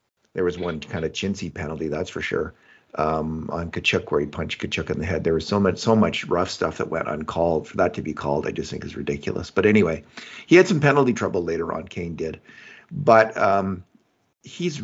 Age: 50-69